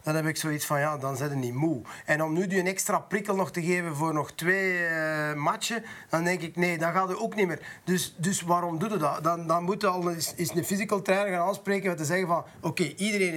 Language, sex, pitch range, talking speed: English, male, 150-190 Hz, 265 wpm